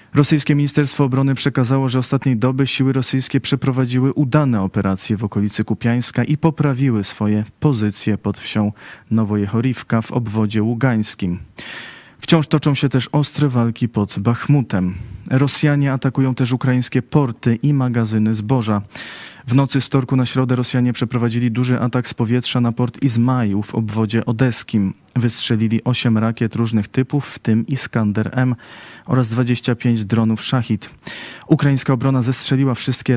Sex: male